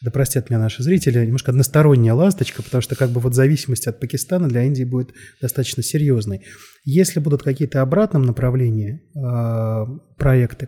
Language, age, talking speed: Russian, 30-49, 150 wpm